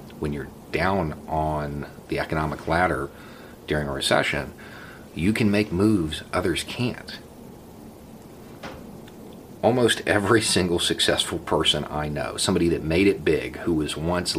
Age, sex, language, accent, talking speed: 40-59, male, English, American, 130 wpm